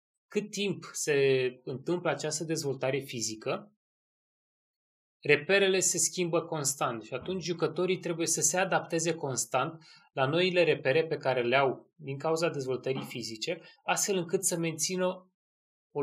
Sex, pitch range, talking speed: male, 135-175 Hz, 125 wpm